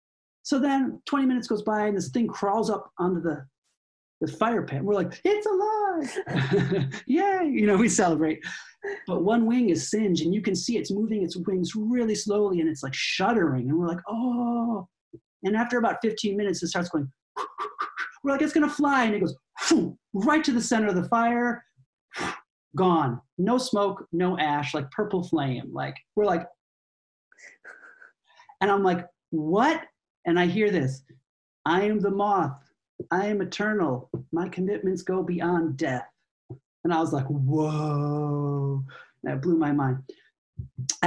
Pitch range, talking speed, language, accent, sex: 155-220 Hz, 165 wpm, English, American, male